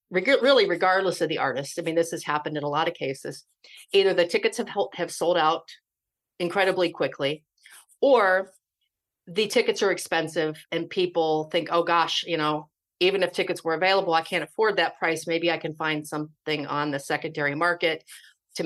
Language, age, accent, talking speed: English, 40-59, American, 180 wpm